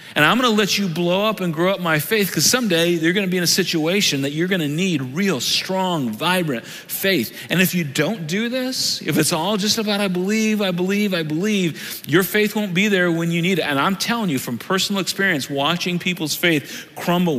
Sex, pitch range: male, 140-190 Hz